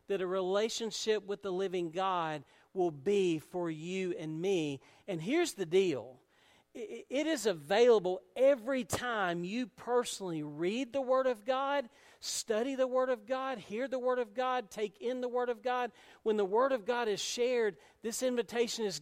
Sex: male